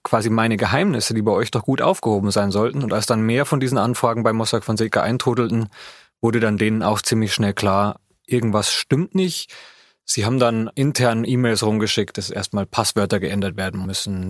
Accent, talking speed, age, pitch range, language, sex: German, 190 wpm, 30-49, 105-130 Hz, German, male